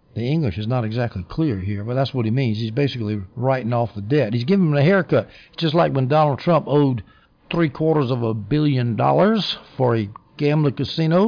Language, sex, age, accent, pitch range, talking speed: English, male, 60-79, American, 115-145 Hz, 215 wpm